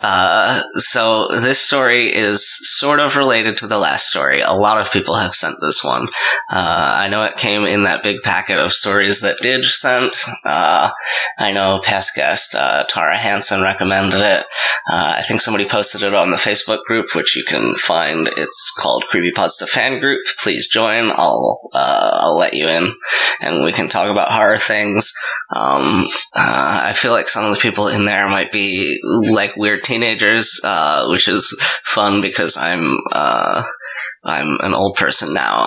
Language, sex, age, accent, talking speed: English, male, 20-39, American, 180 wpm